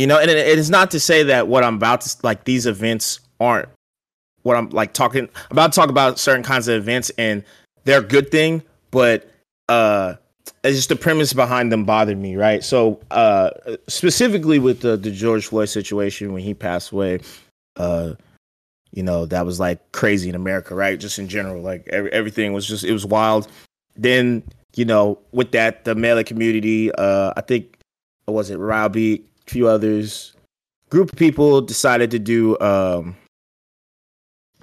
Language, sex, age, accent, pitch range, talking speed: English, male, 20-39, American, 105-125 Hz, 175 wpm